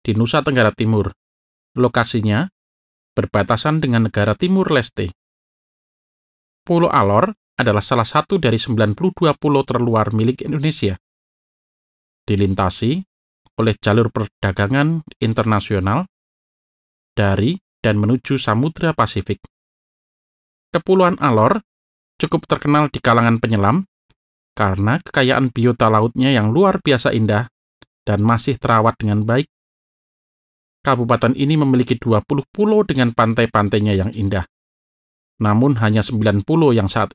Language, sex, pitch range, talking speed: Indonesian, male, 105-135 Hz, 105 wpm